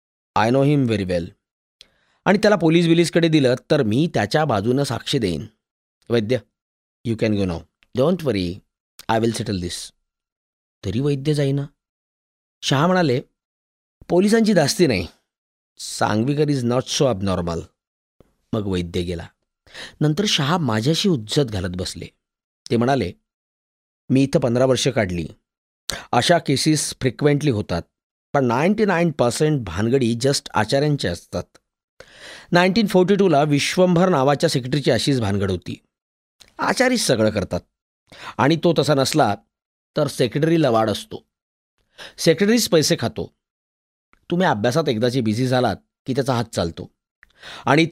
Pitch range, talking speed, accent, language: 100-155 Hz, 120 wpm, native, Marathi